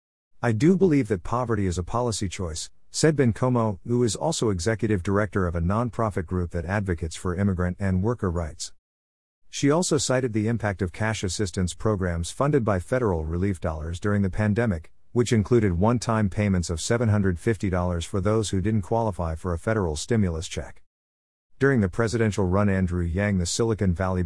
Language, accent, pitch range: English, American, 90-115 Hz